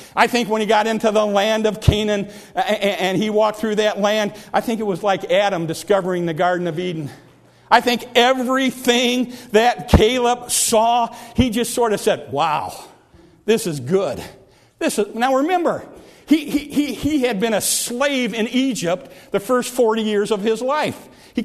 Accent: American